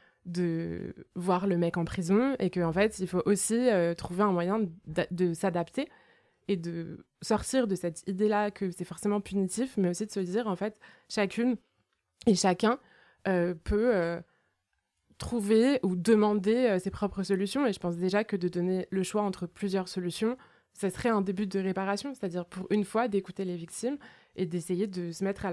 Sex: female